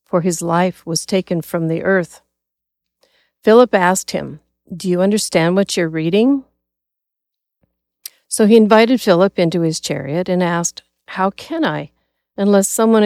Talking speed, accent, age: 140 wpm, American, 50-69